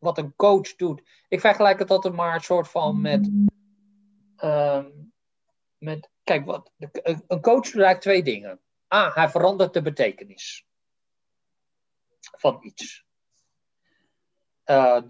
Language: Dutch